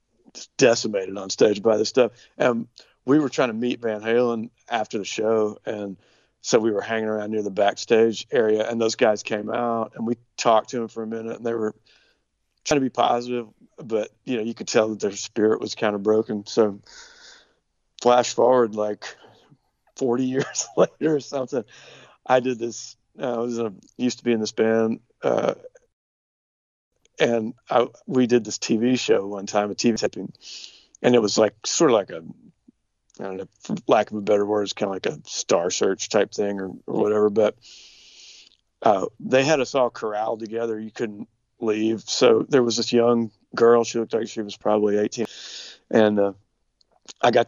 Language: English